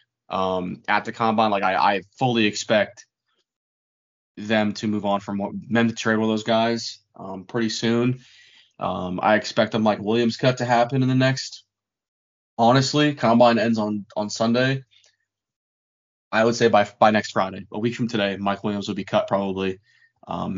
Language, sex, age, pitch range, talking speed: English, male, 20-39, 100-115 Hz, 175 wpm